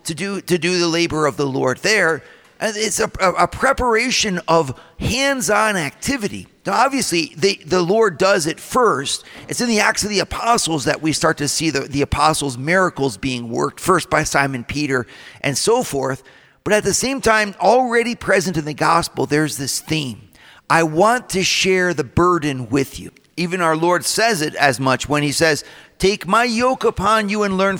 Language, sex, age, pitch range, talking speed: English, male, 50-69, 150-200 Hz, 190 wpm